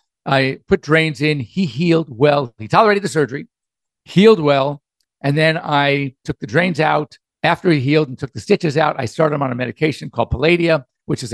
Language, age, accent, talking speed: English, 50-69, American, 200 wpm